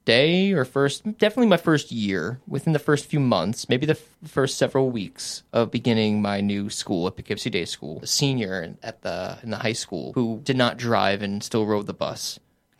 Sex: male